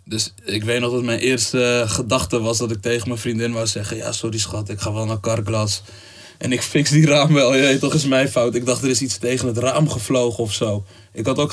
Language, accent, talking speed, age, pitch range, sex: Dutch, Dutch, 260 wpm, 20-39, 105-120 Hz, male